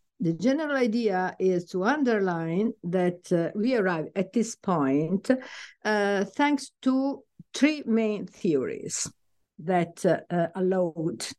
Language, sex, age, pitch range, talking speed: English, female, 60-79, 175-240 Hz, 120 wpm